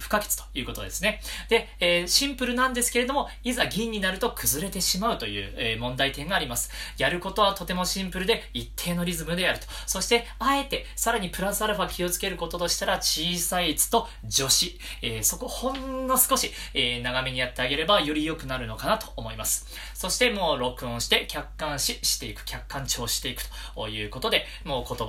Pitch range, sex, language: 125-200 Hz, male, Japanese